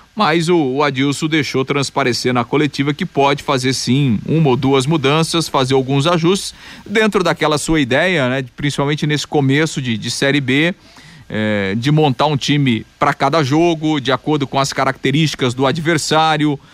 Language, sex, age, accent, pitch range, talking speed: Portuguese, male, 40-59, Brazilian, 135-155 Hz, 160 wpm